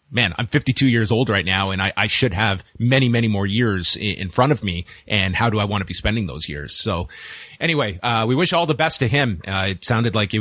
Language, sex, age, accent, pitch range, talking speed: English, male, 30-49, American, 105-135 Hz, 260 wpm